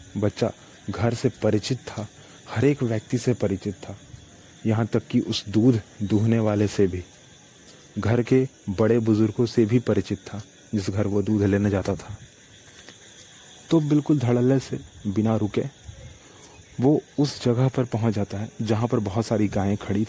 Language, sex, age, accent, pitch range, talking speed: Hindi, male, 30-49, native, 105-125 Hz, 160 wpm